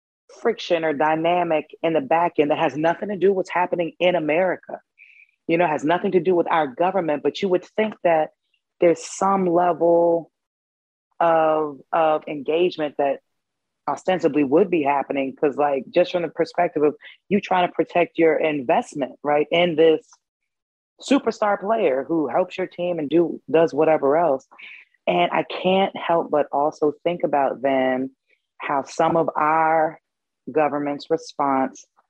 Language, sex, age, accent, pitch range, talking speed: English, female, 30-49, American, 145-180 Hz, 155 wpm